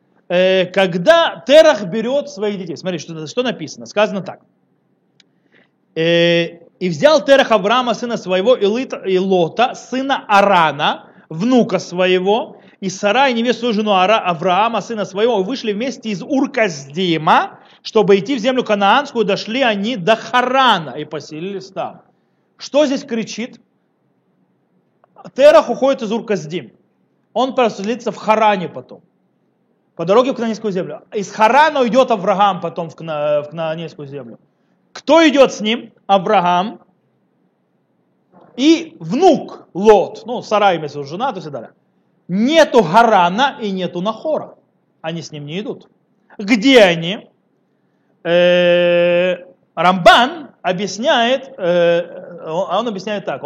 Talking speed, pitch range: 120 wpm, 180-240 Hz